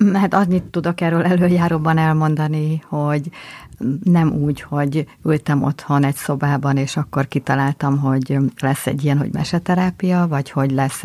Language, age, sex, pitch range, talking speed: Hungarian, 50-69, female, 145-165 Hz, 140 wpm